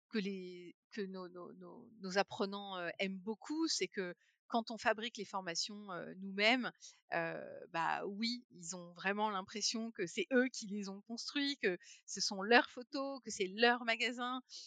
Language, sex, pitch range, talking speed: French, female, 185-235 Hz, 170 wpm